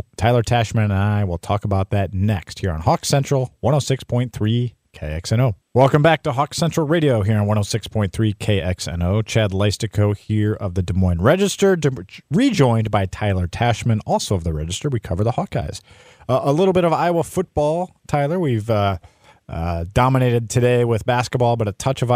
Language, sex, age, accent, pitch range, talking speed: English, male, 40-59, American, 100-130 Hz, 175 wpm